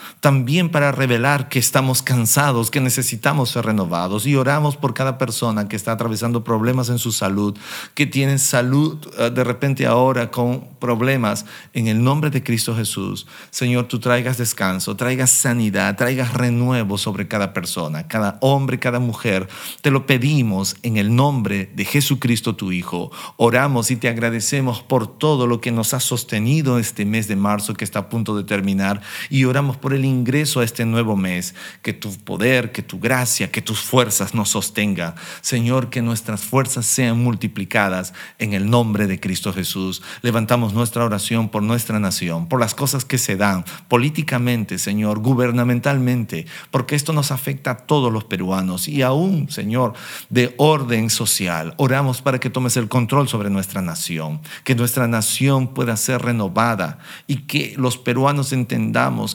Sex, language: male, Spanish